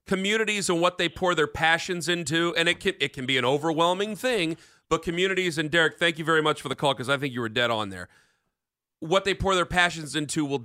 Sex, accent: male, American